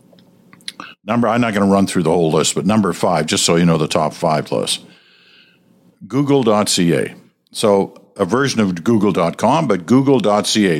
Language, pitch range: English, 85-130 Hz